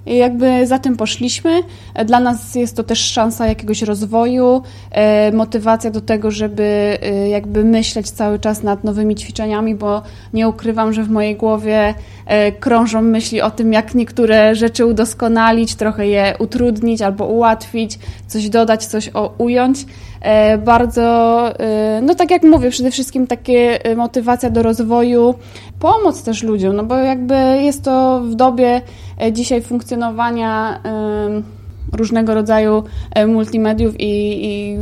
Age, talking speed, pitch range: 20-39, 130 wpm, 210-235 Hz